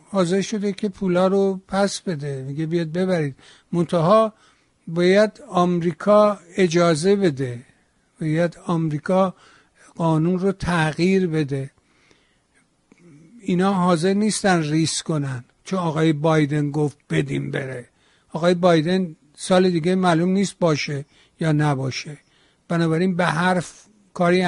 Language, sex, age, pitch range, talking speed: Persian, male, 60-79, 155-190 Hz, 110 wpm